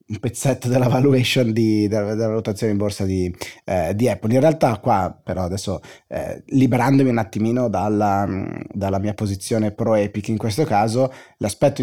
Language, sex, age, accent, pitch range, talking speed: Italian, male, 30-49, native, 100-120 Hz, 160 wpm